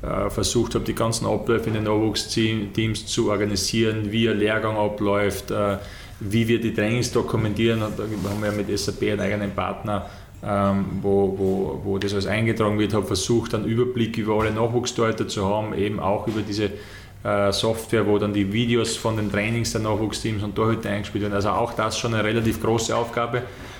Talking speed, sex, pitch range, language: 175 wpm, male, 100-115 Hz, German